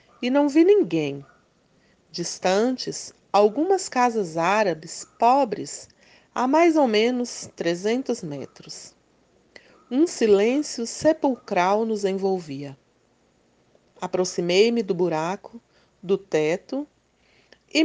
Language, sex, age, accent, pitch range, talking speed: Portuguese, female, 40-59, Brazilian, 185-265 Hz, 85 wpm